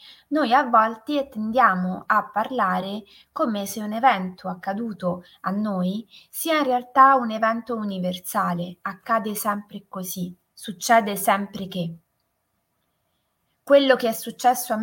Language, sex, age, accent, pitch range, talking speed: Italian, female, 20-39, native, 185-255 Hz, 120 wpm